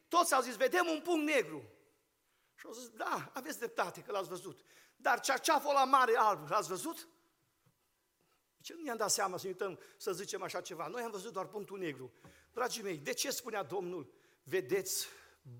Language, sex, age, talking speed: Romanian, male, 50-69, 180 wpm